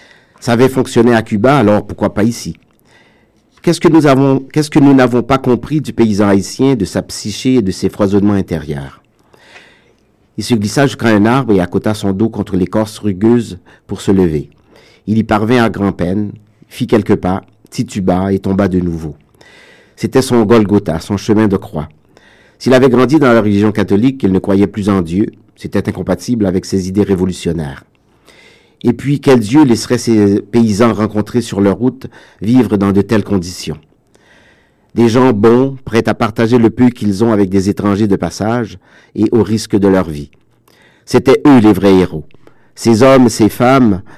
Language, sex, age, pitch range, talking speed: French, male, 50-69, 100-120 Hz, 180 wpm